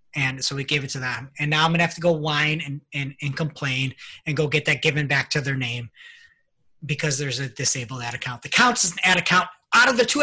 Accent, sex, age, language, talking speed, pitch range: American, male, 30-49, English, 260 wpm, 140-180 Hz